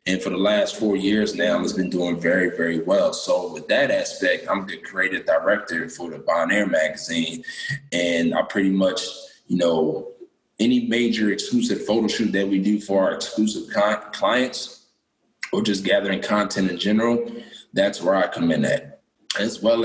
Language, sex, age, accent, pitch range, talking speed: English, male, 20-39, American, 95-145 Hz, 170 wpm